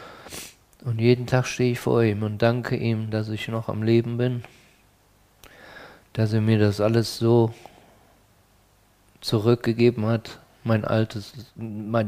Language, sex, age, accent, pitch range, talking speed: German, male, 50-69, German, 110-130 Hz, 125 wpm